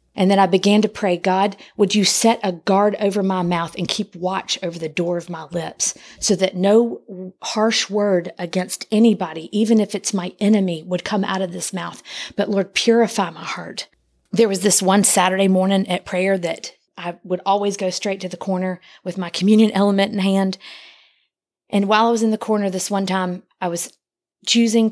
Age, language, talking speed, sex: 40-59, English, 200 wpm, female